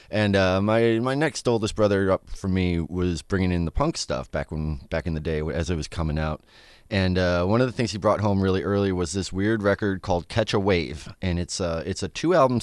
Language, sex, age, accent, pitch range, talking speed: English, male, 30-49, American, 85-110 Hz, 245 wpm